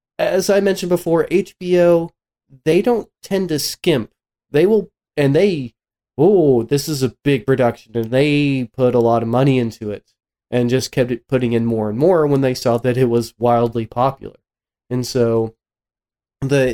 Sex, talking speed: male, 170 wpm